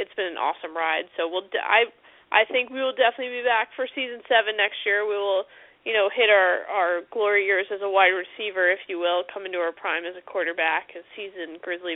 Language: English